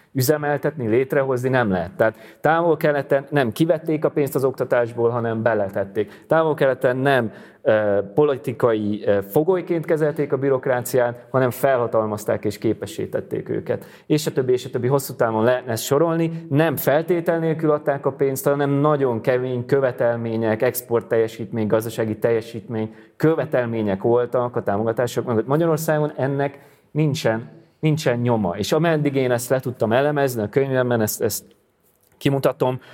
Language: Hungarian